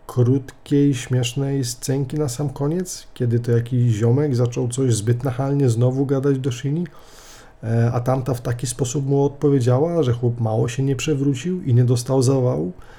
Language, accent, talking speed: Polish, native, 160 wpm